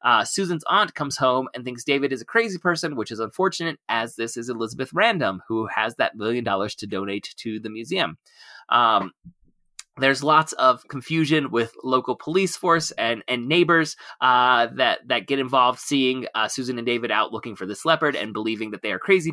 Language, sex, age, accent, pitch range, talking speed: English, male, 20-39, American, 115-155 Hz, 195 wpm